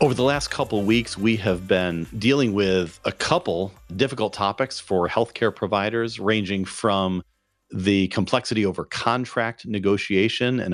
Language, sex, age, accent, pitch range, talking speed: English, male, 40-59, American, 90-115 Hz, 145 wpm